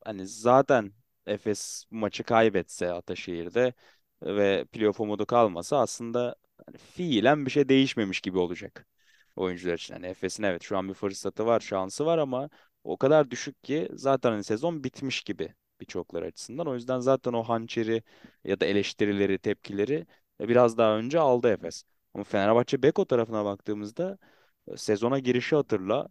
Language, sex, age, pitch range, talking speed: Turkish, male, 20-39, 100-125 Hz, 145 wpm